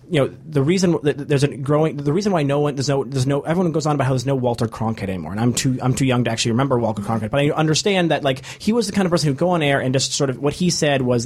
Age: 30-49